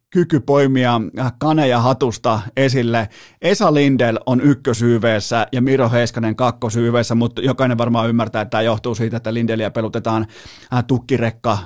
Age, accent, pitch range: 30-49, native, 115-140 Hz